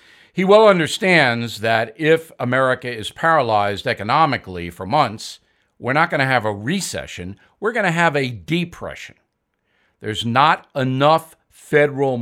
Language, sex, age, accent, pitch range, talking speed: English, male, 60-79, American, 120-165 Hz, 140 wpm